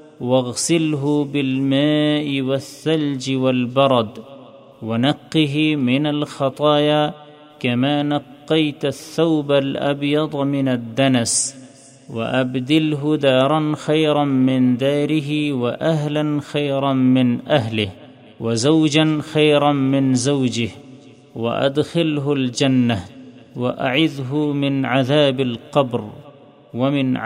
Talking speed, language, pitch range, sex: 75 wpm, Urdu, 130-150 Hz, male